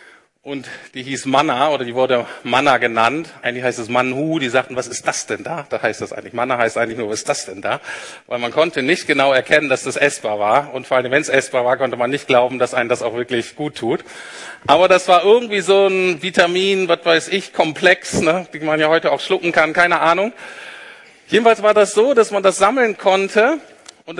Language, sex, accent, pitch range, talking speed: German, male, German, 135-180 Hz, 225 wpm